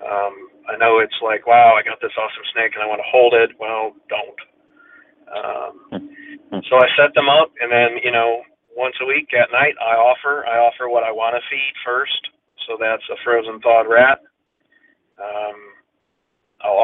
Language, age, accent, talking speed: English, 40-59, American, 185 wpm